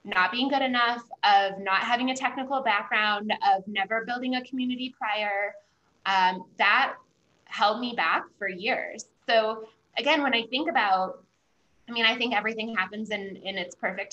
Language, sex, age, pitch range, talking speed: English, female, 20-39, 200-255 Hz, 165 wpm